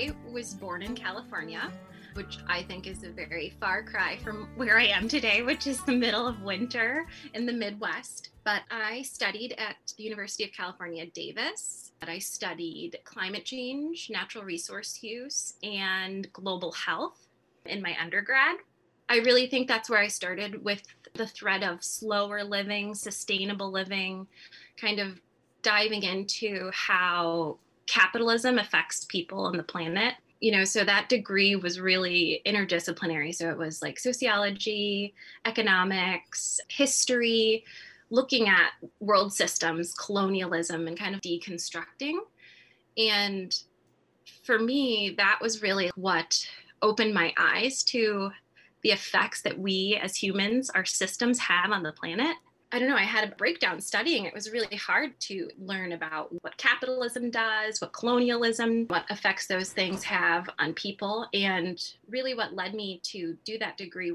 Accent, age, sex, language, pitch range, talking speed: American, 20-39, female, English, 185-230 Hz, 145 wpm